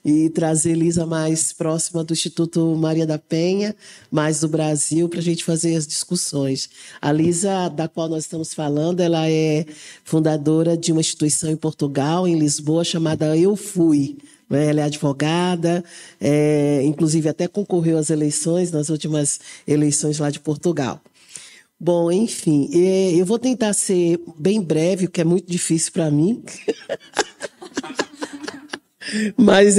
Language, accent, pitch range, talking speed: Portuguese, Brazilian, 160-195 Hz, 140 wpm